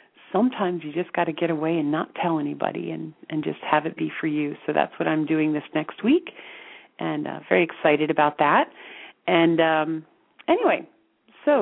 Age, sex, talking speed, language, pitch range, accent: 40-59, female, 190 wpm, English, 155-220 Hz, American